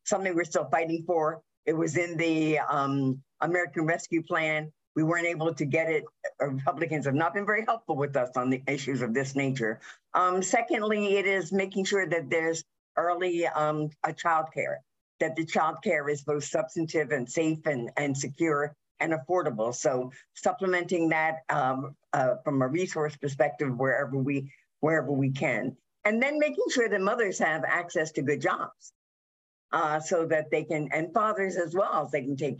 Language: English